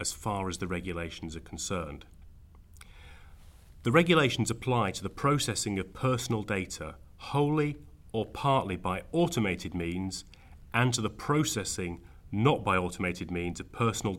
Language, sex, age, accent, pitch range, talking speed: English, male, 30-49, British, 80-110 Hz, 135 wpm